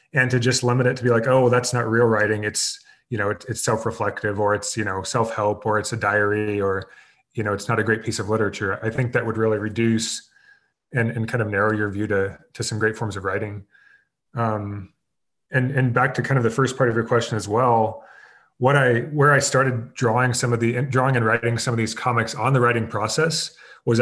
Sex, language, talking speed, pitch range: male, English, 235 wpm, 110-125 Hz